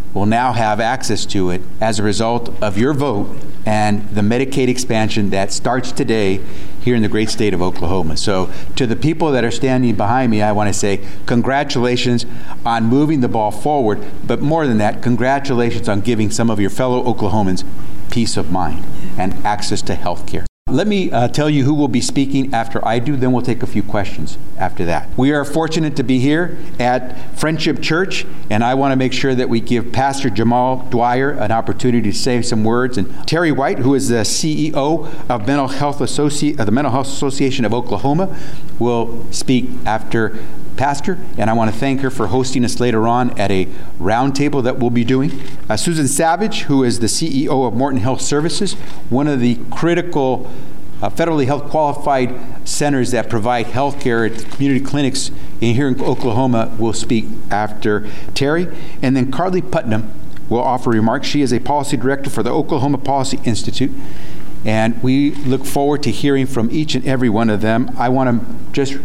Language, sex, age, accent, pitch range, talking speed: English, male, 50-69, American, 110-140 Hz, 190 wpm